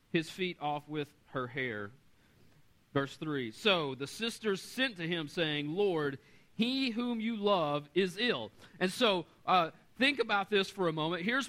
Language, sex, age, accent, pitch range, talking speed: English, male, 40-59, American, 155-210 Hz, 165 wpm